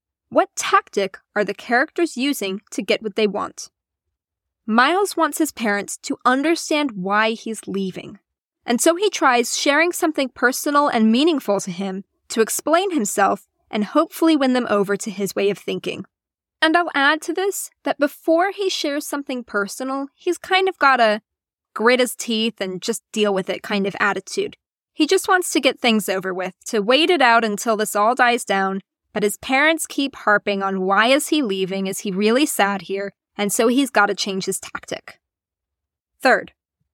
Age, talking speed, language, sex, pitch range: 10-29, 180 wpm, English, female, 205-295 Hz